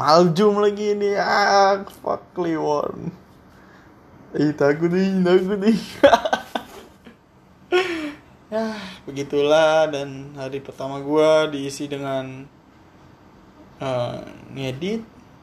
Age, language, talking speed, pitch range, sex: 20-39, Malay, 75 wpm, 140-170 Hz, male